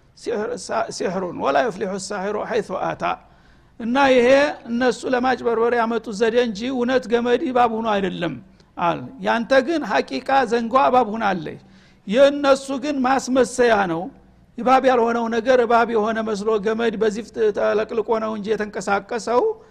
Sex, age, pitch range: male, 60-79, 200-245 Hz